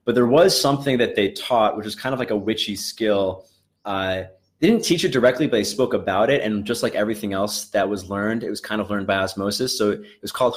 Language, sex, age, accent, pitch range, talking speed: English, male, 20-39, American, 100-125 Hz, 255 wpm